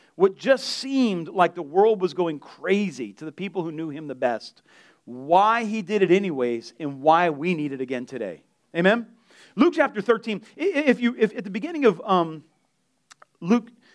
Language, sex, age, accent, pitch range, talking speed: English, male, 40-59, American, 170-225 Hz, 180 wpm